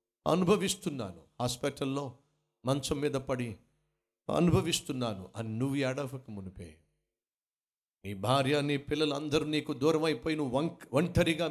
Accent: native